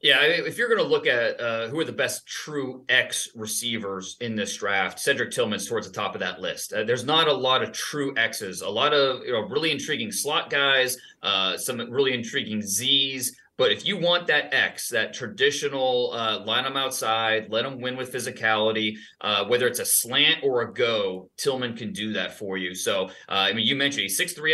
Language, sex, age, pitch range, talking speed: English, male, 30-49, 110-175 Hz, 215 wpm